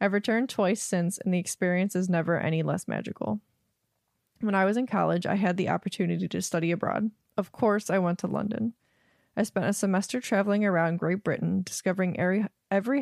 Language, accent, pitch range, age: English, American, 170-205 Hz, 20-39